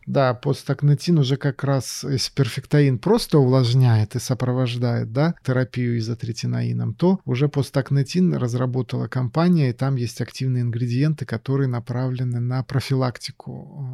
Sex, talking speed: male, 120 wpm